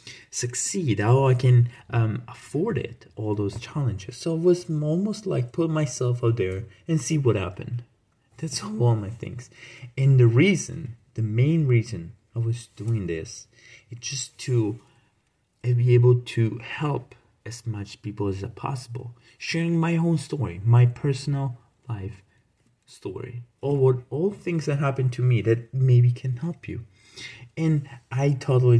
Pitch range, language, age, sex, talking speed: 110-135 Hz, English, 30-49, male, 150 wpm